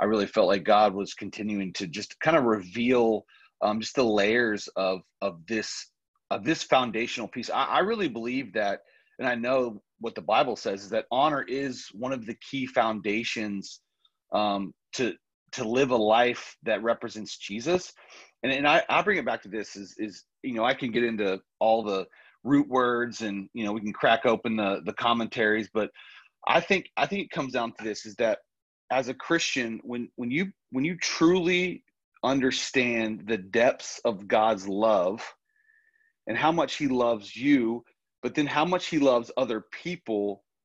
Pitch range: 110-145 Hz